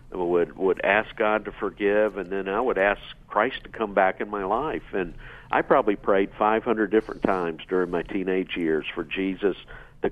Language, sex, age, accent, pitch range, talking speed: English, male, 50-69, American, 90-110 Hz, 195 wpm